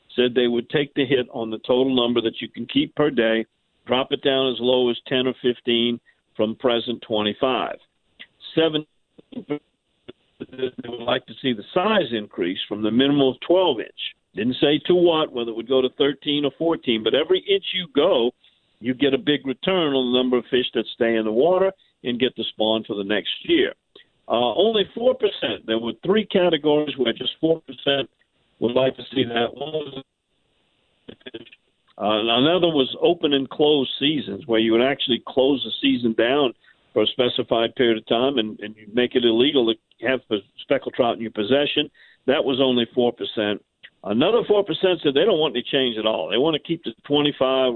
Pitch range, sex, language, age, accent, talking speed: 115-145 Hz, male, English, 50-69, American, 195 wpm